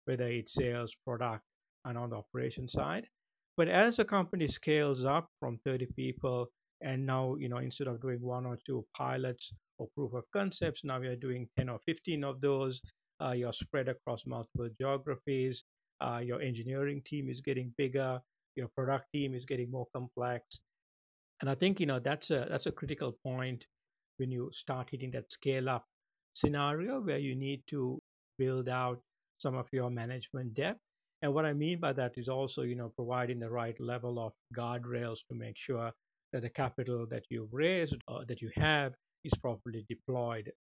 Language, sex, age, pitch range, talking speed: English, male, 60-79, 120-135 Hz, 180 wpm